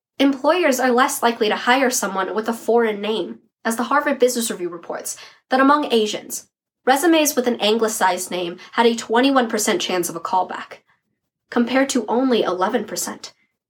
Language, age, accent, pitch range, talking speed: English, 10-29, American, 220-270 Hz, 160 wpm